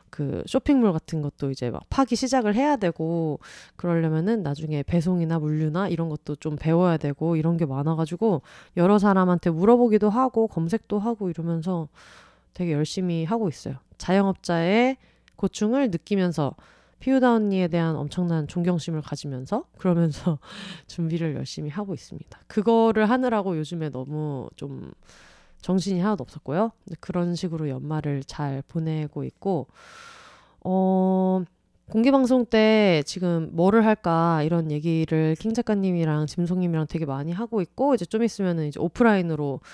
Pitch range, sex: 155-210 Hz, female